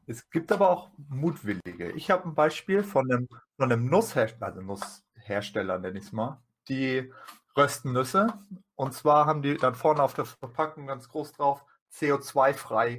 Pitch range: 125-180 Hz